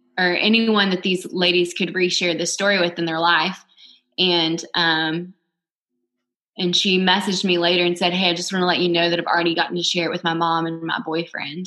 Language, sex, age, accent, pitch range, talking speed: English, female, 20-39, American, 170-185 Hz, 220 wpm